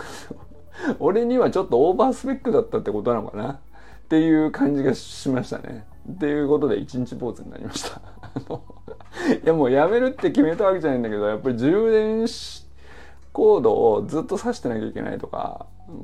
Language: Japanese